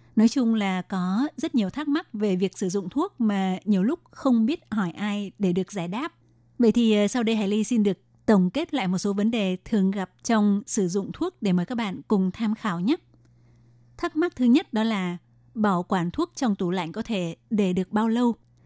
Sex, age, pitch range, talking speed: female, 20-39, 190-240 Hz, 230 wpm